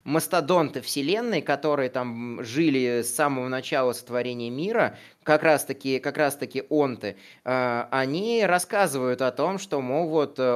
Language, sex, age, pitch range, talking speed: Russian, male, 20-39, 120-150 Hz, 125 wpm